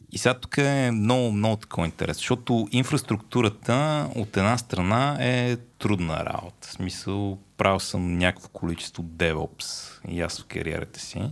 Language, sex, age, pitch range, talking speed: Bulgarian, male, 30-49, 85-110 Hz, 145 wpm